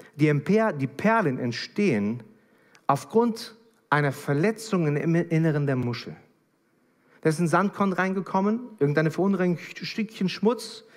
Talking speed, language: 110 wpm, German